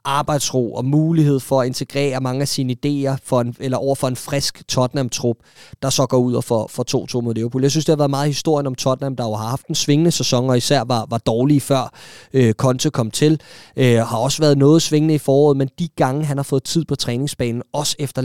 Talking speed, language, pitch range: 225 wpm, Danish, 120-145 Hz